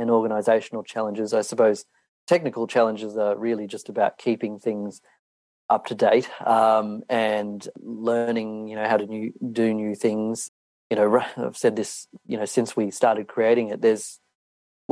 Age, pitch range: 30-49, 110-120 Hz